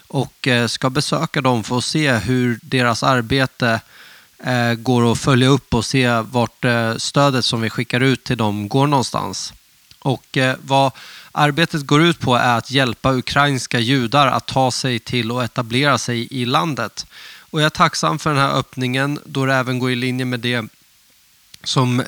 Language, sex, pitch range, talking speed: English, male, 120-145 Hz, 170 wpm